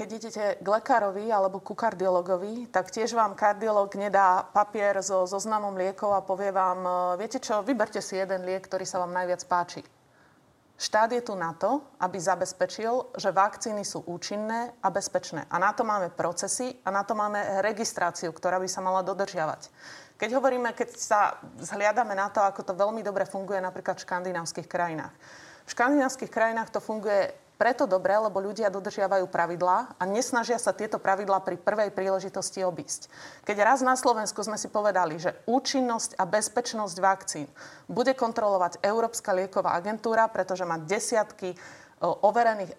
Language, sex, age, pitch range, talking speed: Slovak, female, 30-49, 185-225 Hz, 165 wpm